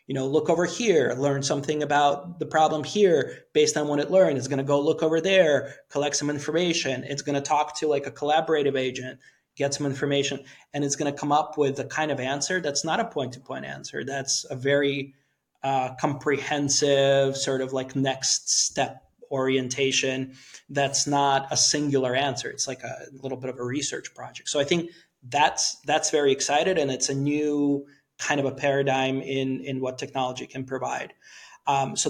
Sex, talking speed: male, 190 wpm